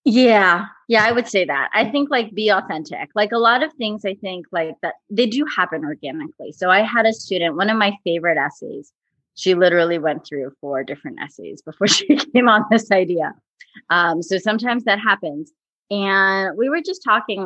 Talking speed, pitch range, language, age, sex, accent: 195 wpm, 170-225 Hz, English, 30-49, female, American